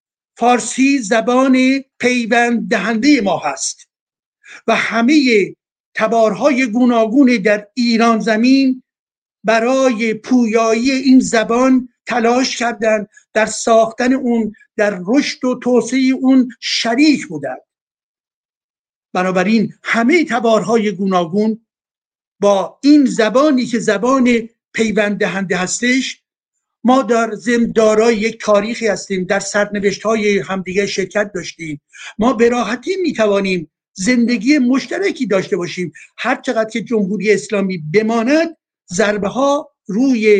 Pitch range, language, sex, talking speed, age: 210-260 Hz, Persian, male, 100 wpm, 50-69